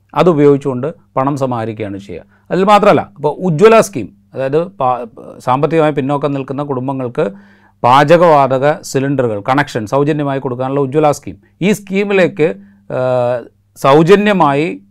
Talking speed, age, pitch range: 95 wpm, 30-49, 115-155 Hz